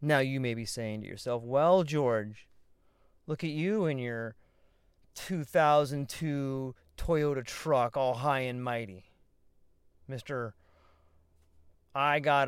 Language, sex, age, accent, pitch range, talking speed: English, male, 30-49, American, 110-160 Hz, 115 wpm